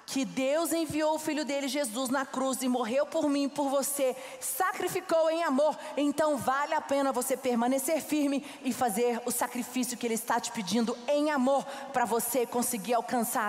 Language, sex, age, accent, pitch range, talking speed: Portuguese, female, 40-59, Brazilian, 250-335 Hz, 180 wpm